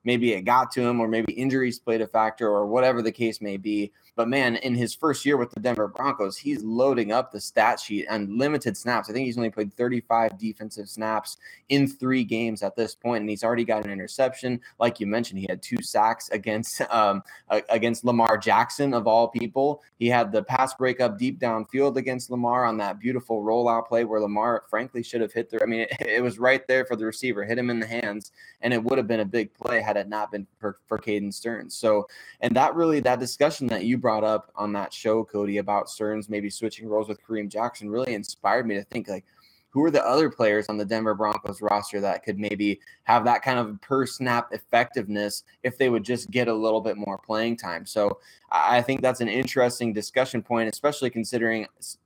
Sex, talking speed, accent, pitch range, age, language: male, 220 wpm, American, 105-125 Hz, 20-39, English